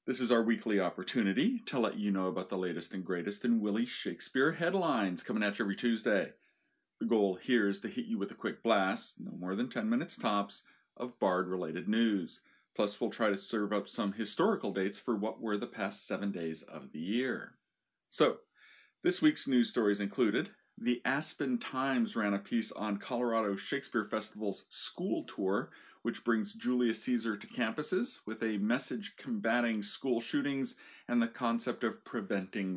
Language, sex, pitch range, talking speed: English, male, 110-145 Hz, 180 wpm